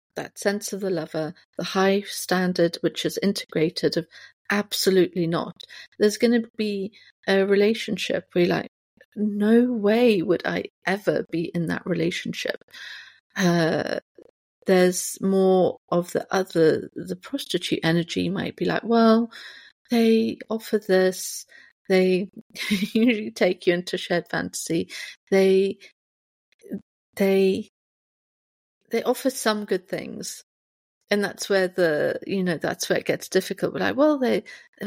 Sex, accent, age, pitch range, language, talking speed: female, British, 50-69, 185-225 Hz, English, 135 wpm